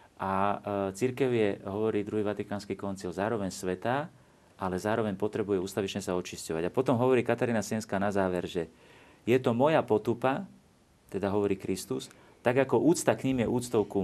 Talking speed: 165 wpm